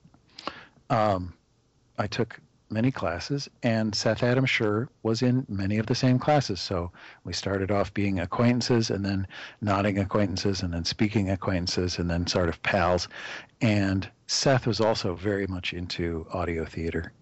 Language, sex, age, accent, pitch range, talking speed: English, male, 50-69, American, 90-115 Hz, 155 wpm